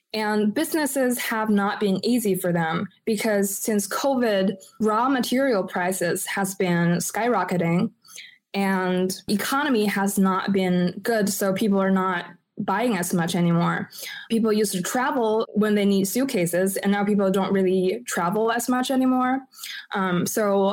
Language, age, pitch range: English, 20-39, 195-240 Hz